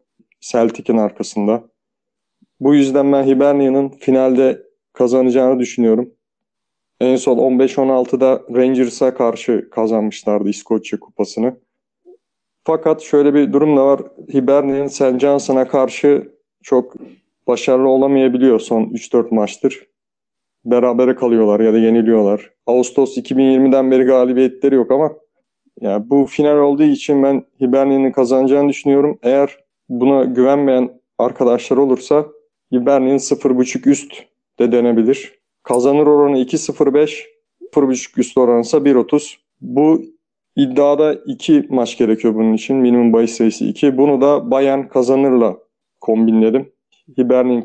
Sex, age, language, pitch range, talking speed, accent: male, 30-49, Turkish, 125-145 Hz, 110 wpm, native